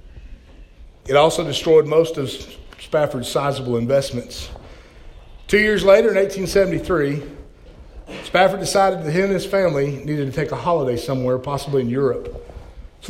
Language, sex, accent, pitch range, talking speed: English, male, American, 130-190 Hz, 135 wpm